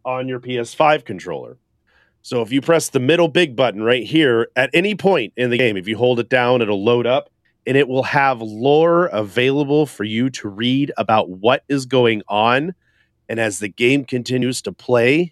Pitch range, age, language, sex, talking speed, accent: 115-145 Hz, 40-59, English, male, 195 wpm, American